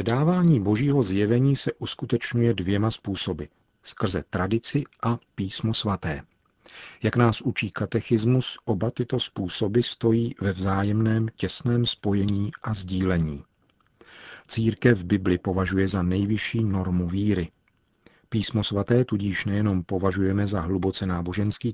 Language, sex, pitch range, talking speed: Czech, male, 95-115 Hz, 115 wpm